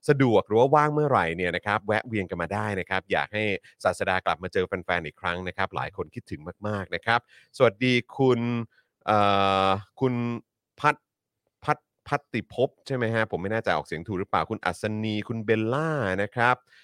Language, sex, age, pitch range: Thai, male, 30-49, 95-120 Hz